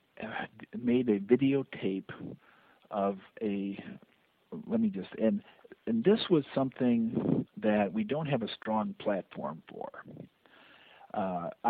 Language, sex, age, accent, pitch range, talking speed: English, male, 50-69, American, 105-150 Hz, 115 wpm